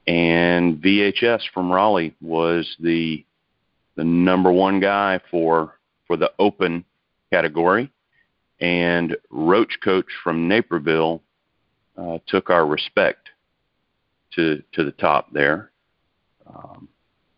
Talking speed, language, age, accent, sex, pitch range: 105 wpm, English, 40-59, American, male, 85-100 Hz